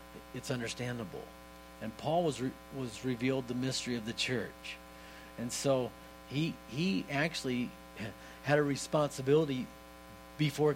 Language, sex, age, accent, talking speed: English, male, 50-69, American, 125 wpm